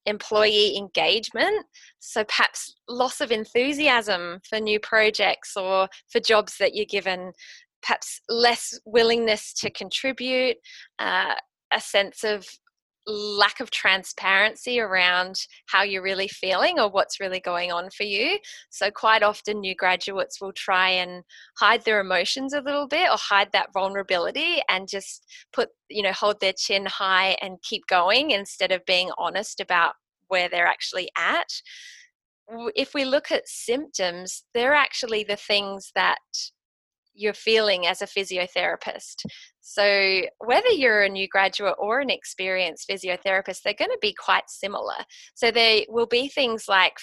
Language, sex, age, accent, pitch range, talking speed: English, female, 20-39, Australian, 190-235 Hz, 150 wpm